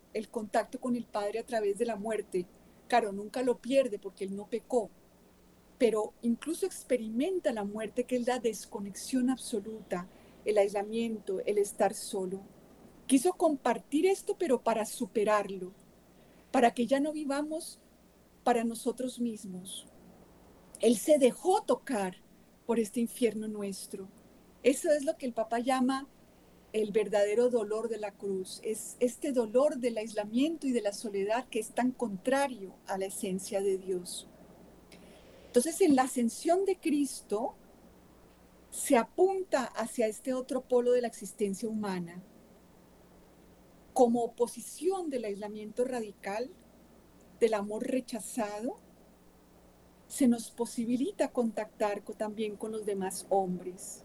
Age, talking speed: 40-59, 135 wpm